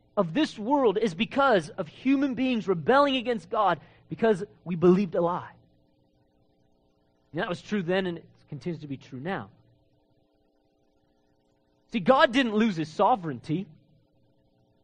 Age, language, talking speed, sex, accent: 30-49, English, 140 wpm, male, American